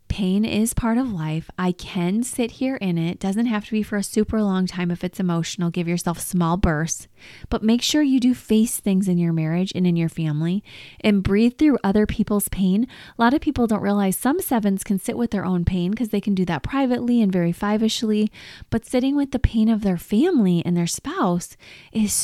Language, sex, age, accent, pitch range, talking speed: English, female, 20-39, American, 175-220 Hz, 220 wpm